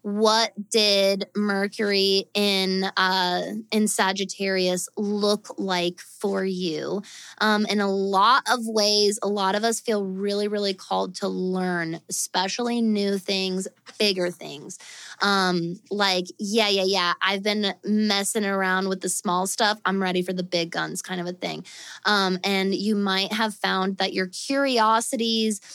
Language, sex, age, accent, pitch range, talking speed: English, female, 20-39, American, 190-220 Hz, 150 wpm